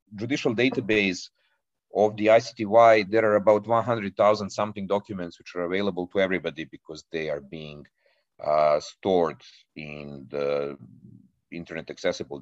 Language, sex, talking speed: Hungarian, male, 125 wpm